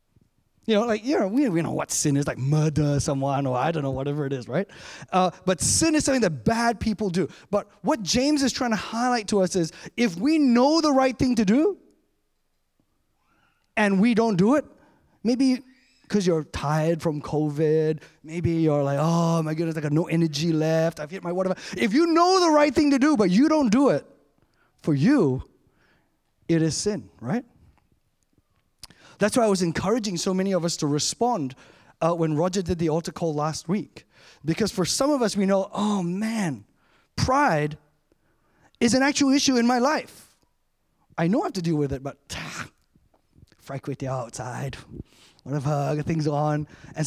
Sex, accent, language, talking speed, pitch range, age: male, American, English, 190 wpm, 155-235 Hz, 30-49